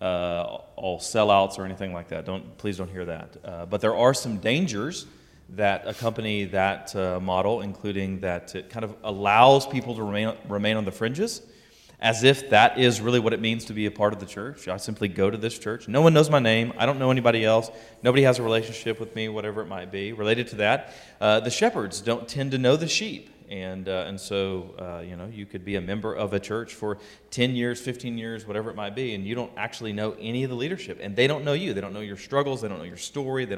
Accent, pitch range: American, 100-120 Hz